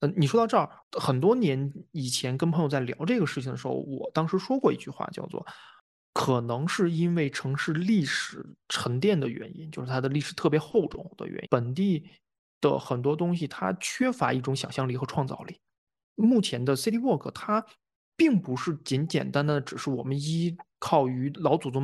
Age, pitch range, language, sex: 20-39, 135-200 Hz, Chinese, male